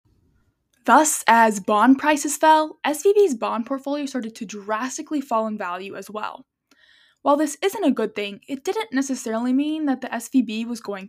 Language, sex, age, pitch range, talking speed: English, female, 10-29, 225-305 Hz, 170 wpm